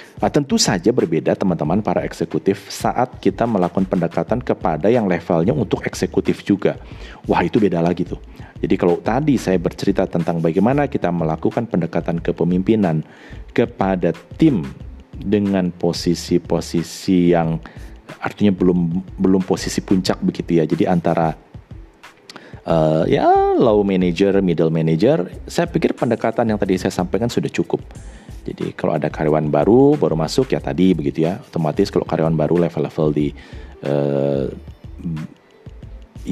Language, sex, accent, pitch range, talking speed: Indonesian, male, native, 80-95 Hz, 130 wpm